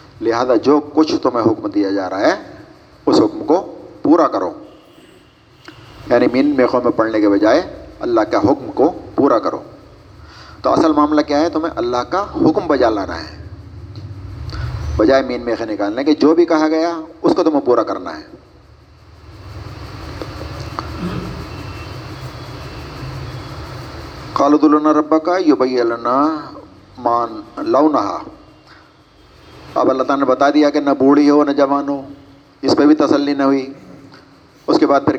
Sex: male